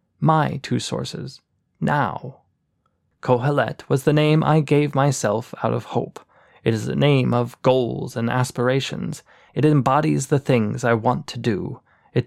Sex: male